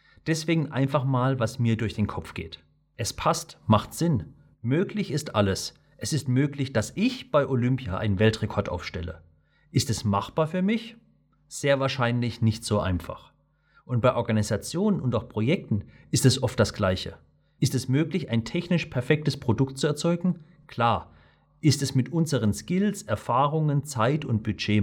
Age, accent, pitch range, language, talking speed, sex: 40-59, German, 105-150 Hz, German, 160 wpm, male